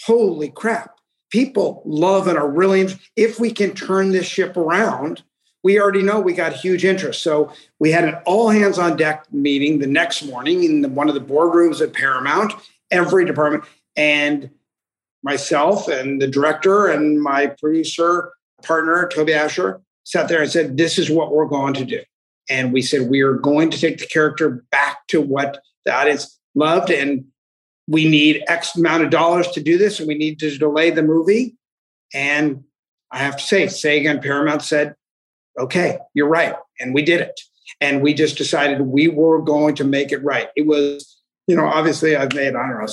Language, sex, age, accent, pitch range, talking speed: English, male, 50-69, American, 145-175 Hz, 185 wpm